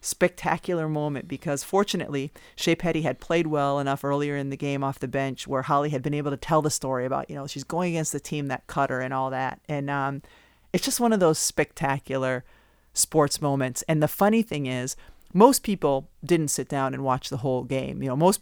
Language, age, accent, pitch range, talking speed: English, 40-59, American, 130-155 Hz, 220 wpm